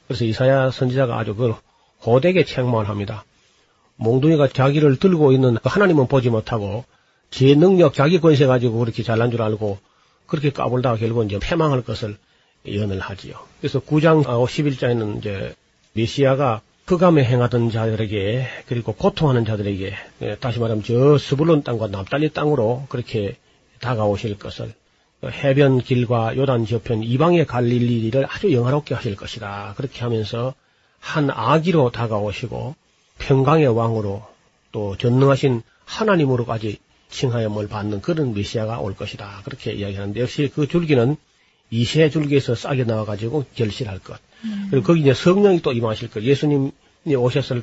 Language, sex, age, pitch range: Korean, male, 40-59, 110-140 Hz